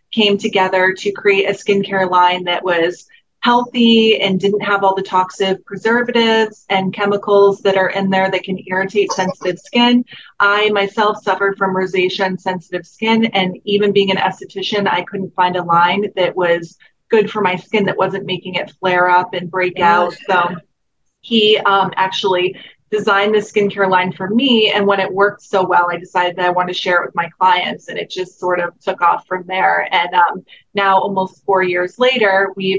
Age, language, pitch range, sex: 30-49, English, 185-205 Hz, female